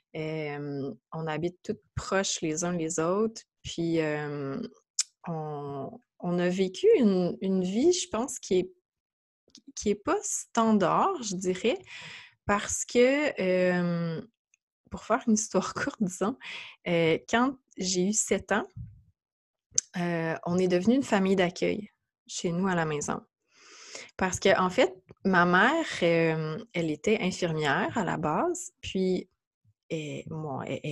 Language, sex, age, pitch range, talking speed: French, female, 20-39, 165-220 Hz, 140 wpm